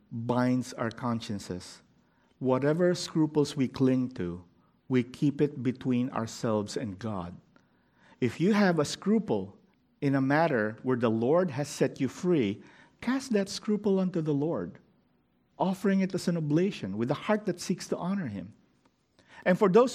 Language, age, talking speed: English, 50-69, 155 wpm